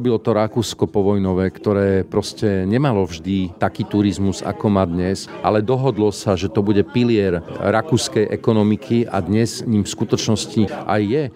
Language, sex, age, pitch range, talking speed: Slovak, male, 40-59, 95-110 Hz, 150 wpm